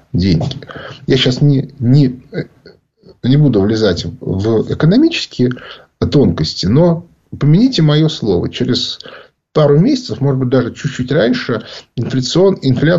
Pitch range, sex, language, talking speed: 110-155 Hz, male, Russian, 110 wpm